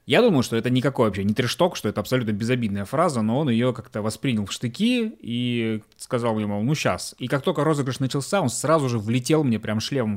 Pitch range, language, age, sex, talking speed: 110-140 Hz, Russian, 20-39, male, 225 wpm